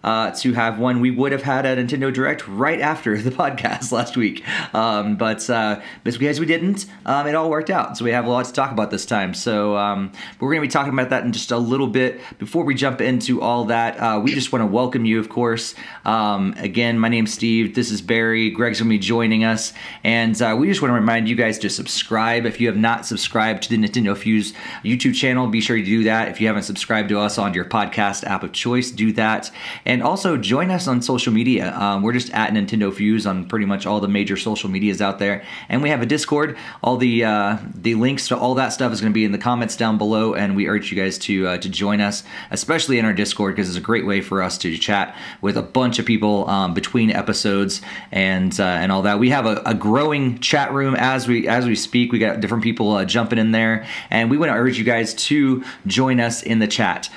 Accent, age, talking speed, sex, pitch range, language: American, 30-49, 250 wpm, male, 105-125 Hz, English